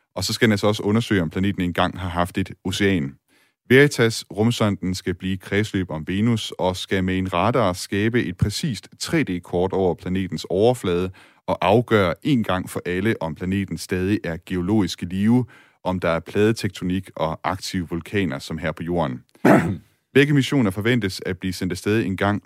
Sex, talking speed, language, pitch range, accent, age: male, 170 wpm, Danish, 90-105 Hz, native, 30-49